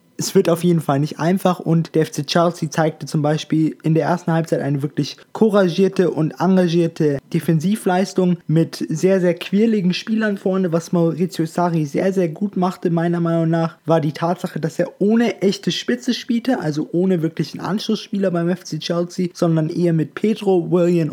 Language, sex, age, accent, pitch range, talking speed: German, male, 20-39, German, 150-180 Hz, 175 wpm